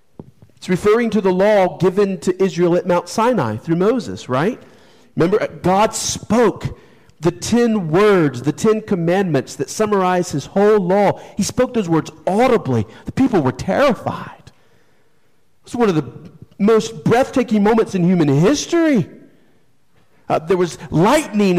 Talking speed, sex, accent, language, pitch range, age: 140 wpm, male, American, English, 155-215 Hz, 40-59